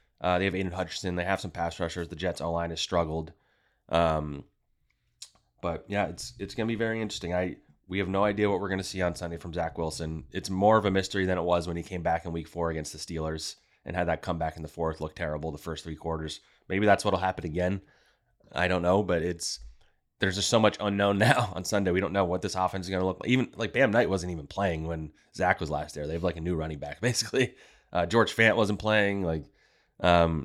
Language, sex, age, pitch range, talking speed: English, male, 30-49, 85-100 Hz, 250 wpm